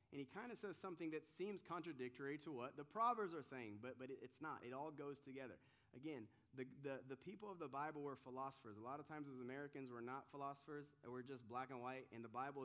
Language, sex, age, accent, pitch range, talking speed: English, male, 30-49, American, 125-195 Hz, 240 wpm